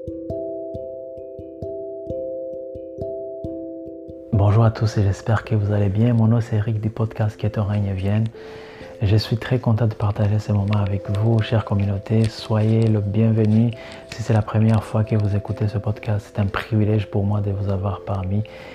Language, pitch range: French, 100-115 Hz